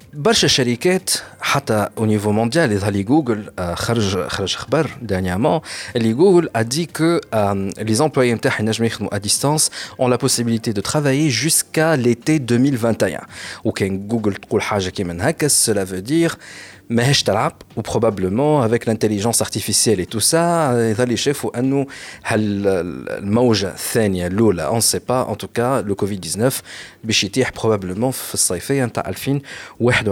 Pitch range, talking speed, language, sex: 100-140 Hz, 115 wpm, Arabic, male